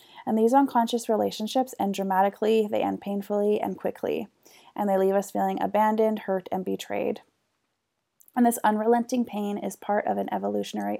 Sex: female